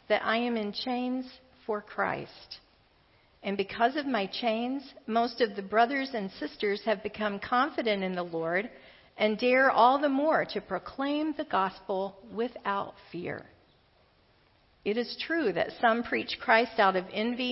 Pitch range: 195-250 Hz